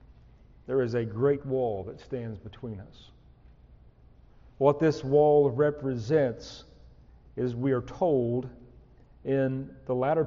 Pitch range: 125-165 Hz